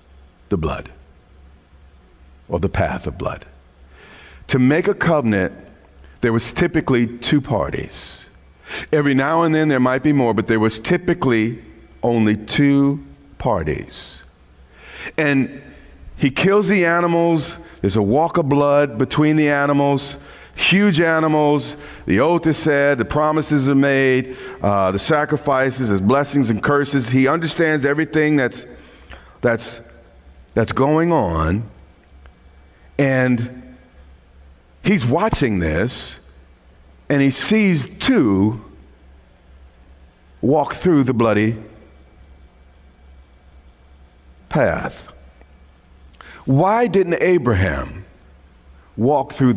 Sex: male